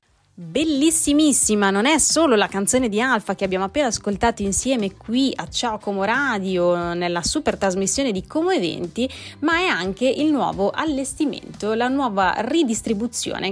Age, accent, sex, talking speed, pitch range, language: 30-49, native, female, 145 wpm, 190-280 Hz, Italian